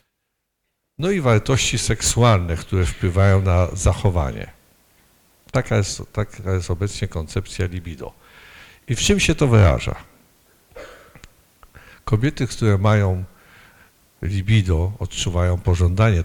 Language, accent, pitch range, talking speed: Polish, native, 90-115 Hz, 95 wpm